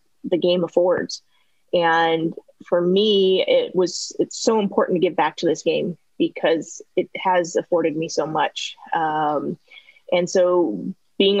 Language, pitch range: English, 175-210 Hz